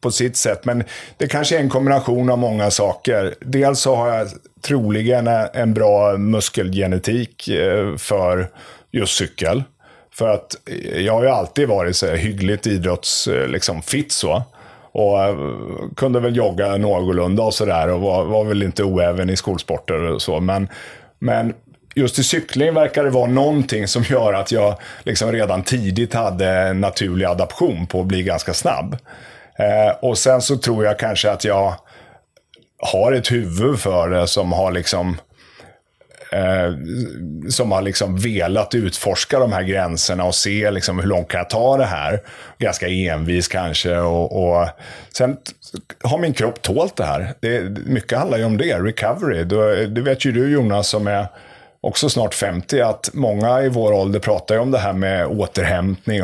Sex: male